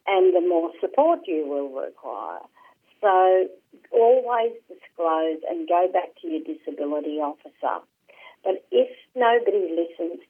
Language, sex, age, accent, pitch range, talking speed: English, female, 50-69, Australian, 155-245 Hz, 115 wpm